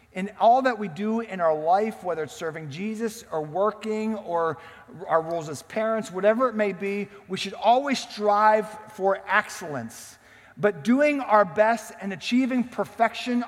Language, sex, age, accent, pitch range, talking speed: English, male, 40-59, American, 135-215 Hz, 160 wpm